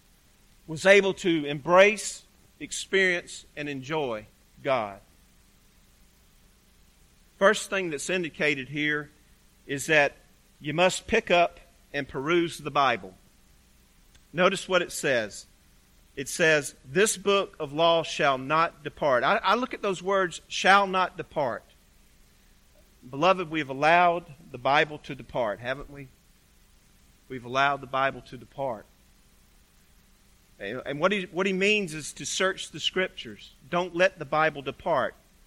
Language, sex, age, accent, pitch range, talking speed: English, male, 40-59, American, 140-190 Hz, 130 wpm